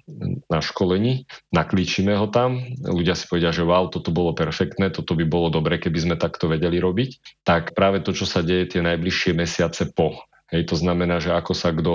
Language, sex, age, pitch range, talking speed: Slovak, male, 40-59, 85-95 Hz, 195 wpm